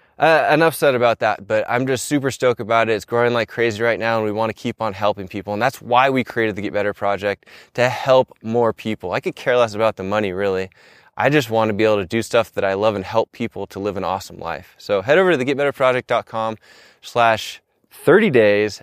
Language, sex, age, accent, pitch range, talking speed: English, male, 20-39, American, 110-140 Hz, 230 wpm